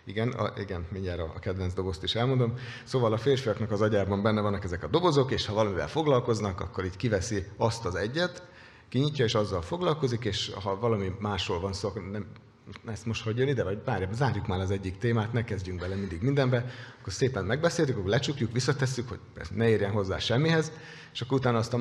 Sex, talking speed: male, 200 wpm